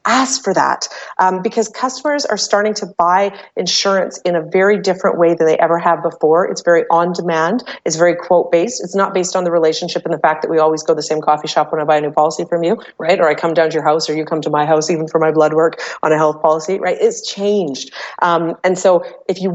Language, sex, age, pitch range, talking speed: English, female, 30-49, 165-205 Hz, 255 wpm